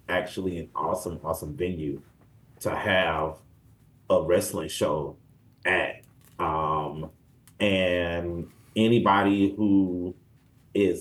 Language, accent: English, American